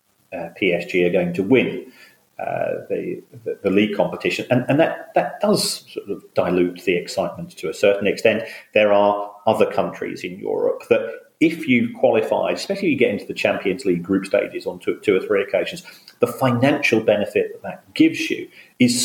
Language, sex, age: English, male, 40-59